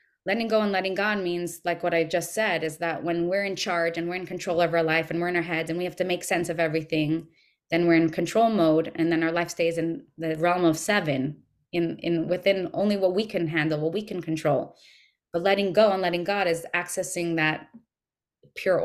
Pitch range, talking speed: 165-185 Hz, 235 wpm